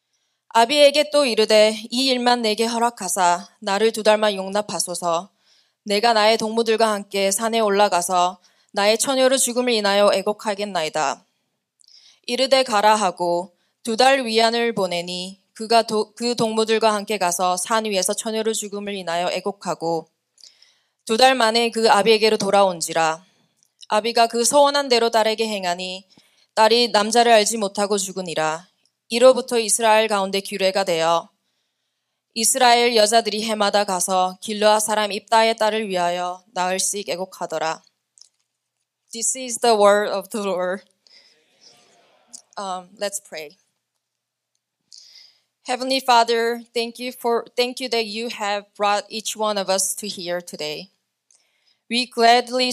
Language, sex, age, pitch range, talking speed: English, female, 20-39, 185-230 Hz, 100 wpm